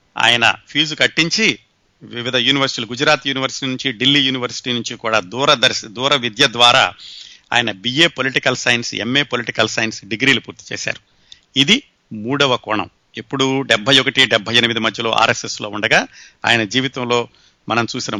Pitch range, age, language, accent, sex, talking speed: 120-150 Hz, 50-69, Telugu, native, male, 140 wpm